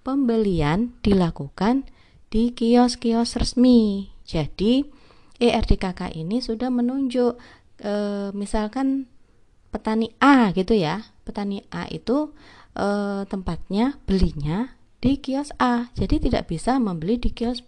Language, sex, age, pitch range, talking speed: Indonesian, female, 30-49, 155-230 Hz, 105 wpm